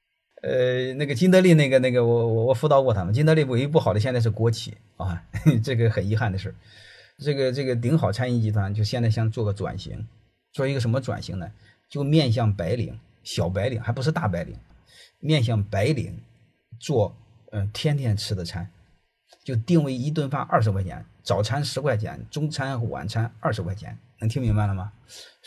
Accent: native